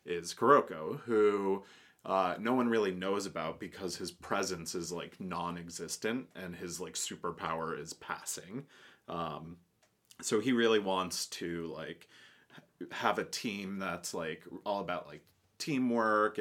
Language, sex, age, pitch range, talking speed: English, male, 30-49, 85-95 Hz, 135 wpm